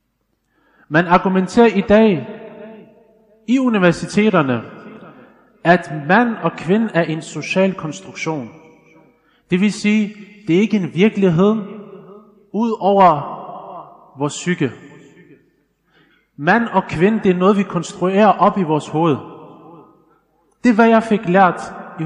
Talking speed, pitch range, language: 120 wpm, 140-190 Hz, Danish